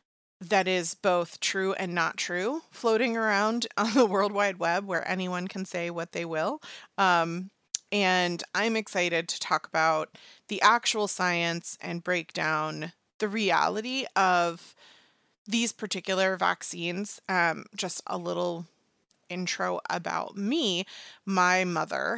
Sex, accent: female, American